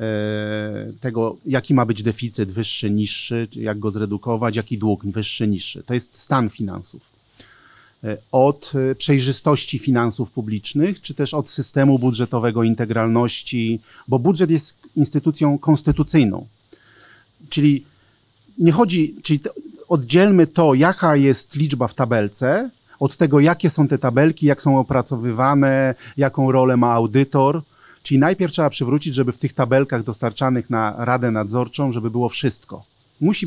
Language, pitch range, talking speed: Polish, 120-150 Hz, 130 wpm